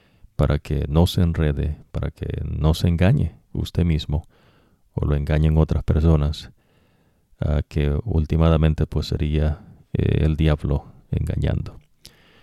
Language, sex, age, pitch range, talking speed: English, male, 50-69, 75-90 Hz, 125 wpm